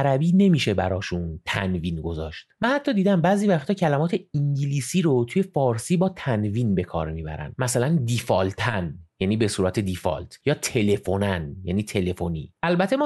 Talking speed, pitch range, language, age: 140 wpm, 90-145 Hz, Persian, 30-49